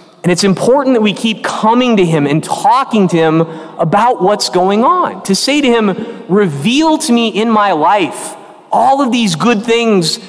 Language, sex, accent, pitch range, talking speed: English, male, American, 190-270 Hz, 185 wpm